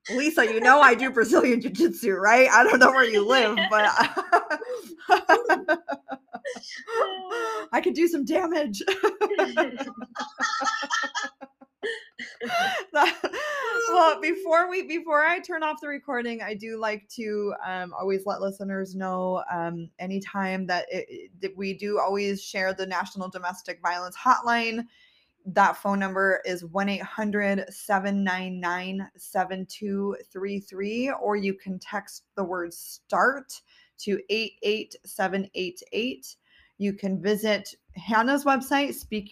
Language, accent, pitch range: English, American, 190-290 Hz